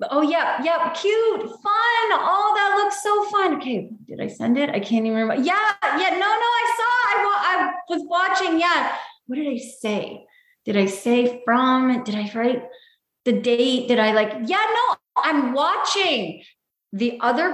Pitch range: 220-305 Hz